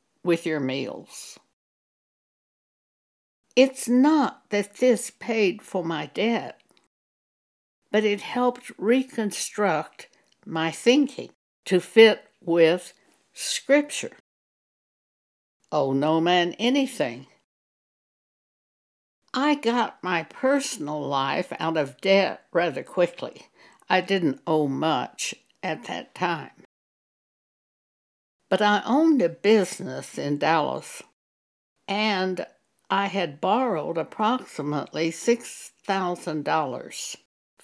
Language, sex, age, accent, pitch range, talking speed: English, female, 60-79, American, 165-235 Hz, 90 wpm